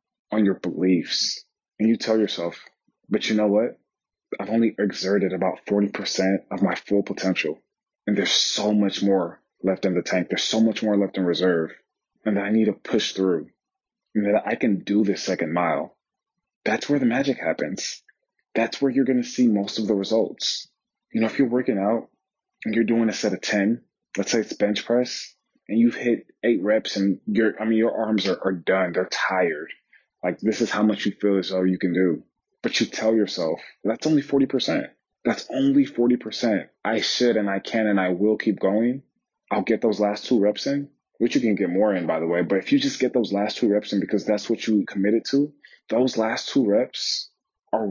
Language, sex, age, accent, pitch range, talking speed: English, male, 20-39, American, 100-115 Hz, 215 wpm